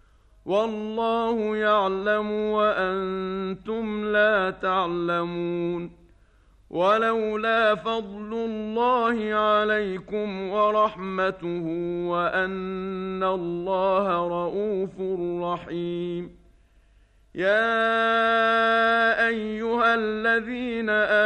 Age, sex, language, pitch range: 40-59, male, Arabic, 185-215 Hz